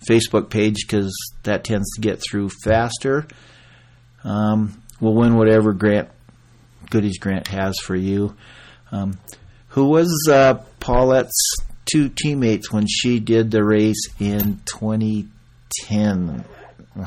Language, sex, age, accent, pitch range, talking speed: English, male, 50-69, American, 105-125 Hz, 115 wpm